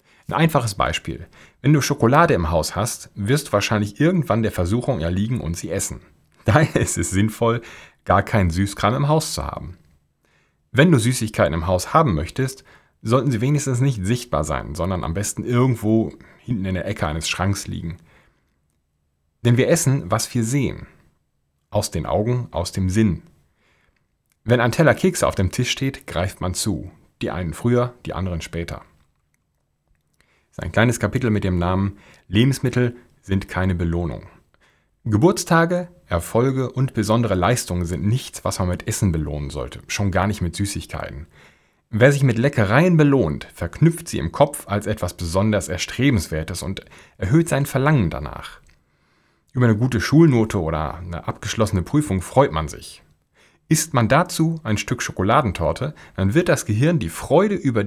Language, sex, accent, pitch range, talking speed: German, male, German, 85-130 Hz, 160 wpm